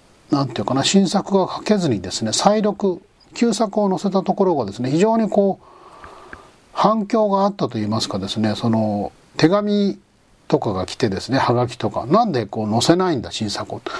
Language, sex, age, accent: Japanese, male, 40-59, native